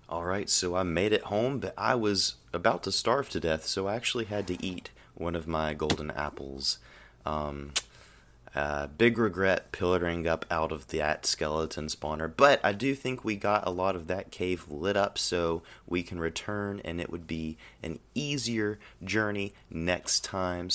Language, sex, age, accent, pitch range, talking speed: English, male, 30-49, American, 85-110 Hz, 180 wpm